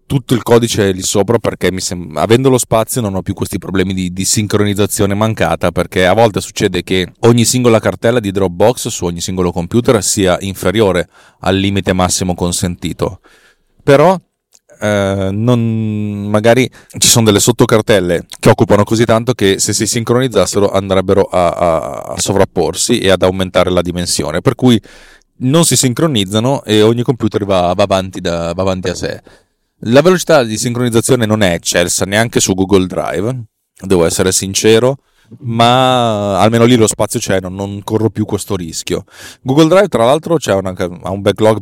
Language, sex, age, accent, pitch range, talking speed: Italian, male, 30-49, native, 95-115 Hz, 165 wpm